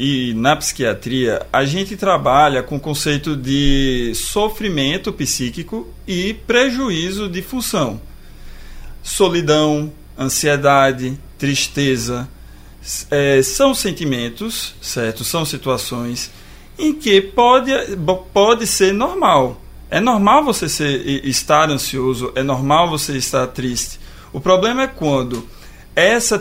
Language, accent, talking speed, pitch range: Portuguese, Brazilian, 105 wpm, 135-180 Hz